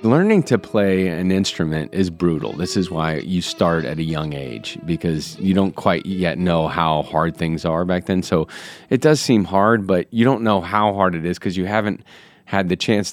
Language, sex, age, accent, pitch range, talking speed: English, male, 30-49, American, 85-110 Hz, 215 wpm